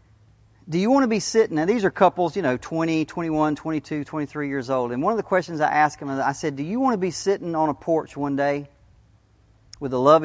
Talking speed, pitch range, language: 245 wpm, 110-155 Hz, English